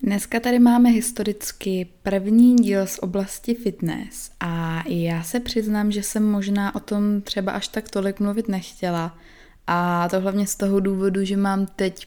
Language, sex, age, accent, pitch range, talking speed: Czech, female, 20-39, native, 180-205 Hz, 165 wpm